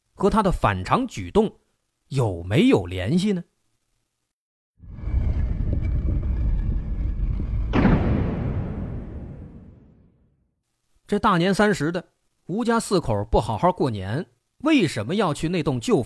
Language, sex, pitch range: Chinese, male, 115-180 Hz